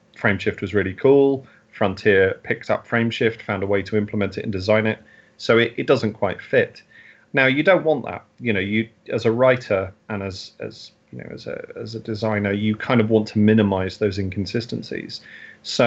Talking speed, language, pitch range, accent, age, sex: 200 wpm, English, 105-120 Hz, British, 30-49, male